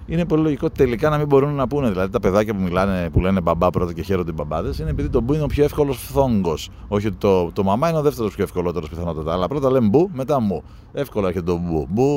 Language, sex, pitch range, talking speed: Greek, male, 90-125 Hz, 260 wpm